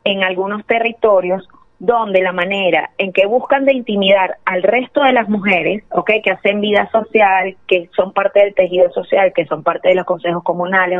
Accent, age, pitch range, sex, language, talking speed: American, 30-49, 185-220 Hz, female, Spanish, 185 wpm